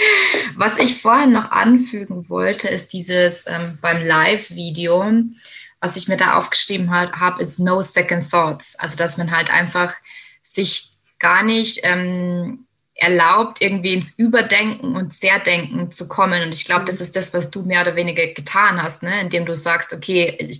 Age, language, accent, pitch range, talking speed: 20-39, German, German, 170-200 Hz, 160 wpm